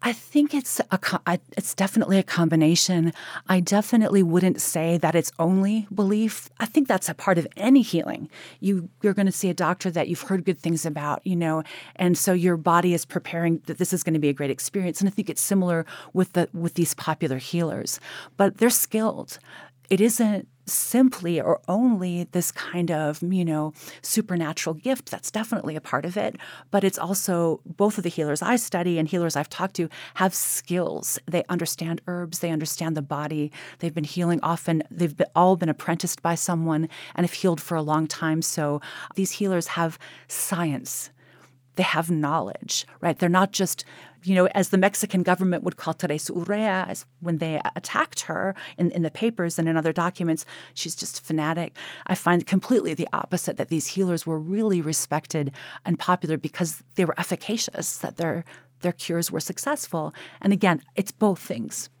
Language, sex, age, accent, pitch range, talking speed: English, female, 40-59, American, 160-190 Hz, 190 wpm